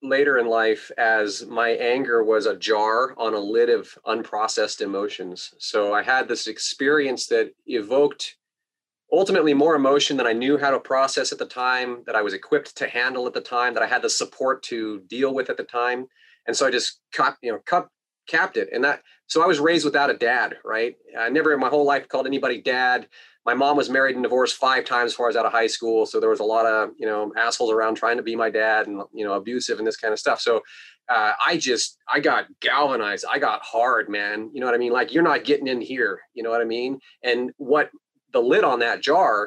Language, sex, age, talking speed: English, male, 30-49, 240 wpm